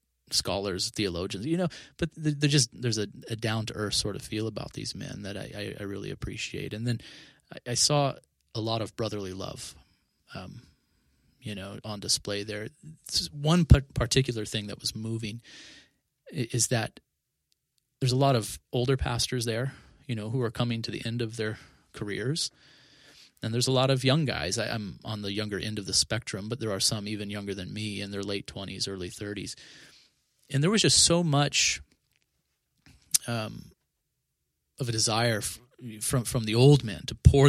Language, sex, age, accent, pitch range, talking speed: English, male, 30-49, American, 105-135 Hz, 180 wpm